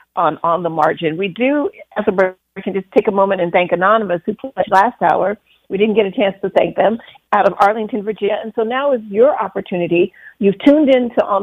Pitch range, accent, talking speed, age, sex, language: 185-230 Hz, American, 225 wpm, 50-69, female, English